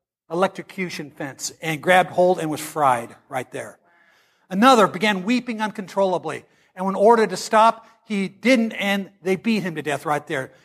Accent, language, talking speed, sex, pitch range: American, English, 165 wpm, male, 180-260 Hz